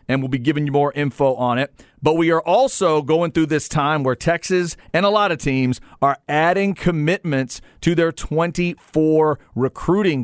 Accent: American